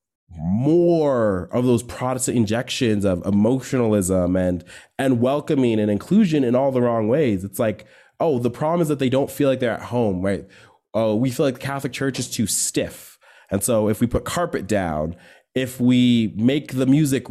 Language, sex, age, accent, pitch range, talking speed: English, male, 20-39, American, 105-140 Hz, 185 wpm